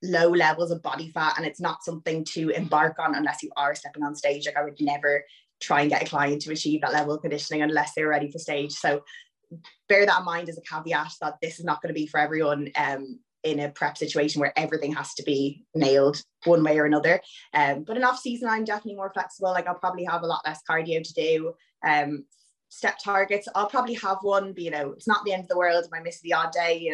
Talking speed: 250 wpm